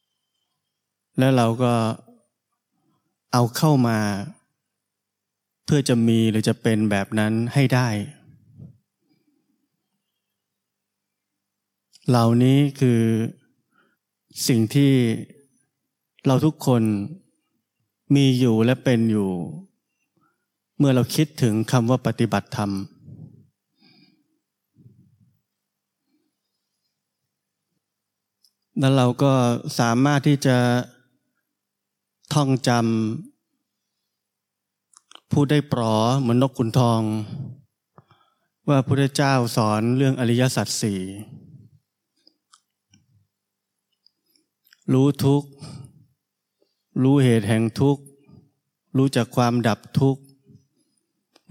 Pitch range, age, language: 110-140 Hz, 20-39, Thai